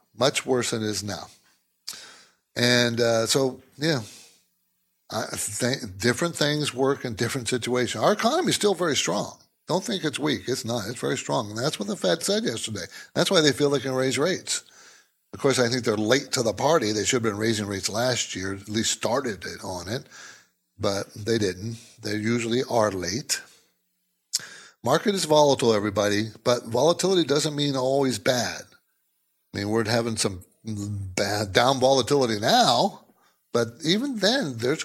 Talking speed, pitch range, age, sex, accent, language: 165 wpm, 115-155 Hz, 60-79, male, American, English